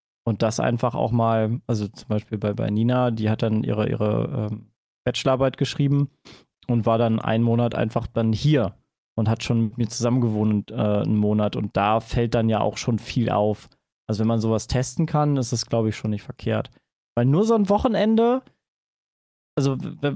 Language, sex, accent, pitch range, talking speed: German, male, German, 115-155 Hz, 195 wpm